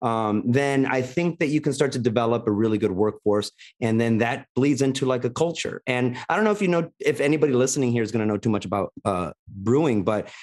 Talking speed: 245 wpm